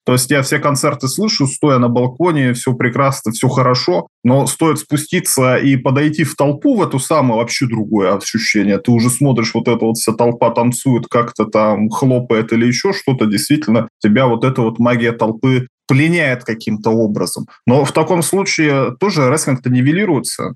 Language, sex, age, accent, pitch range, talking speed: Russian, male, 20-39, native, 115-140 Hz, 170 wpm